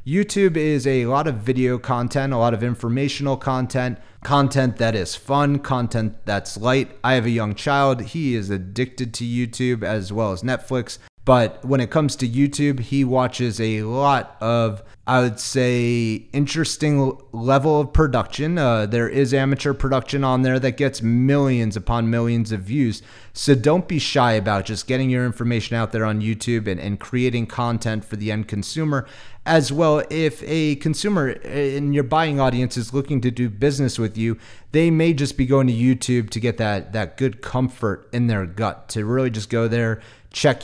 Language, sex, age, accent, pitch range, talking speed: English, male, 30-49, American, 110-135 Hz, 185 wpm